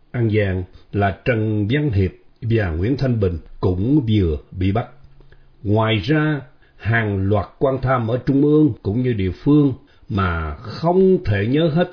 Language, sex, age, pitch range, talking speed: Vietnamese, male, 60-79, 95-135 Hz, 155 wpm